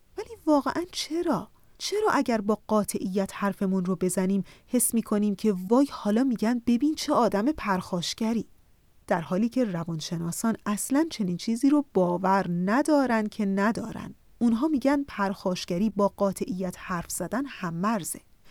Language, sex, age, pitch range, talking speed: Persian, female, 30-49, 185-260 Hz, 130 wpm